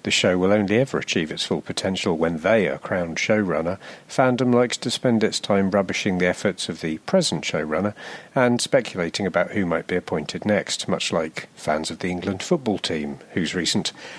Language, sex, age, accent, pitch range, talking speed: English, male, 50-69, British, 90-110 Hz, 190 wpm